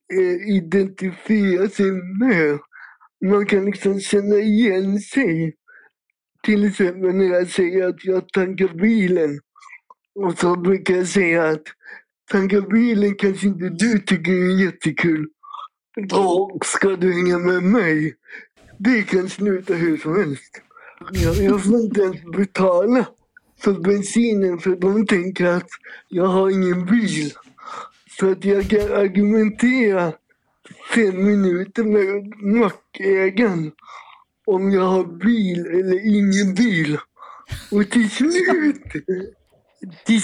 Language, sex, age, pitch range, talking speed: Swedish, male, 50-69, 185-220 Hz, 120 wpm